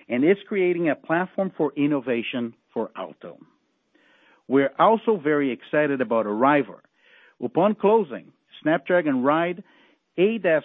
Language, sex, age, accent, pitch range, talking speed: English, male, 50-69, American, 130-190 Hz, 115 wpm